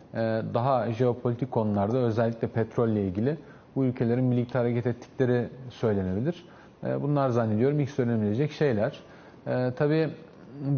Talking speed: 100 wpm